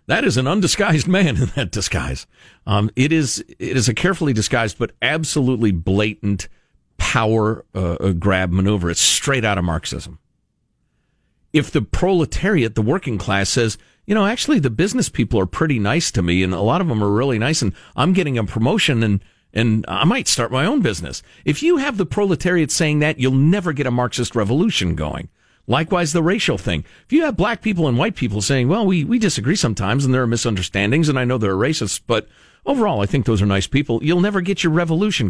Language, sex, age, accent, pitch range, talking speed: English, male, 50-69, American, 110-175 Hz, 205 wpm